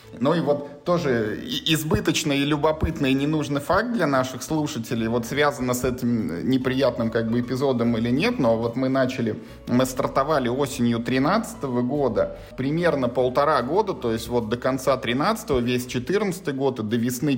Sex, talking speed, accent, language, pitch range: male, 160 wpm, native, Russian, 120-150 Hz